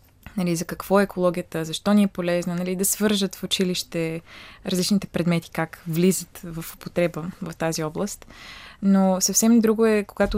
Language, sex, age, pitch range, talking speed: Bulgarian, female, 20-39, 175-200 Hz, 160 wpm